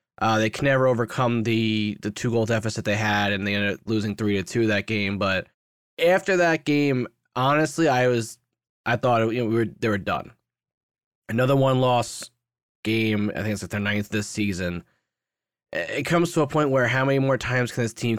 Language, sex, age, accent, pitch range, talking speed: English, male, 20-39, American, 110-135 Hz, 210 wpm